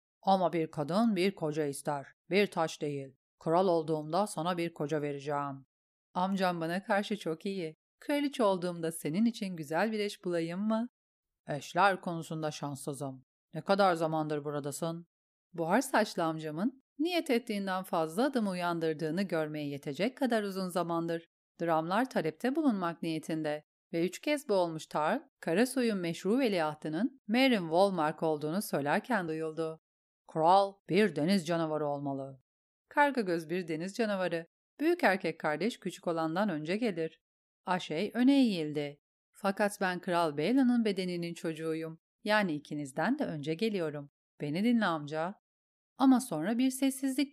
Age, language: 40-59, Turkish